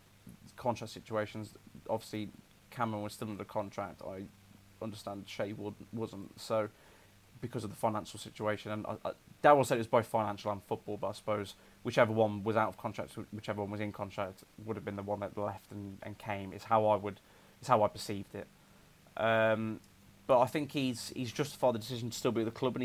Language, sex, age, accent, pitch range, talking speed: English, male, 20-39, British, 105-120 Hz, 205 wpm